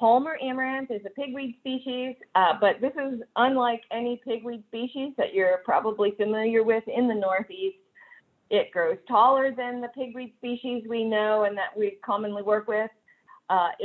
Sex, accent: female, American